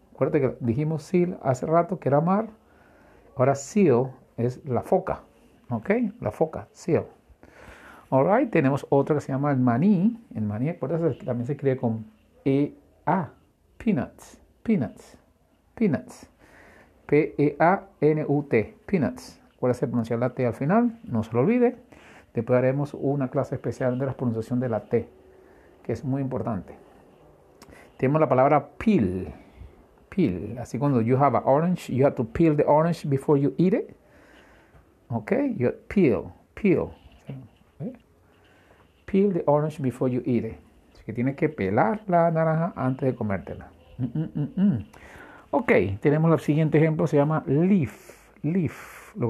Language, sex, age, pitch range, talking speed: English, male, 50-69, 120-160 Hz, 155 wpm